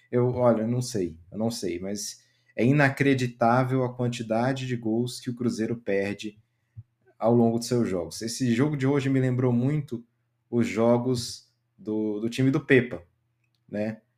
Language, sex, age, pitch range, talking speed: Portuguese, male, 20-39, 115-135 Hz, 160 wpm